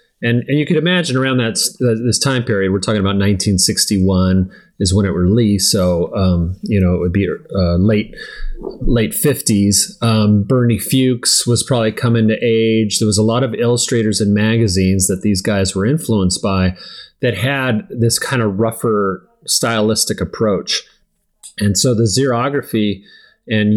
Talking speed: 160 wpm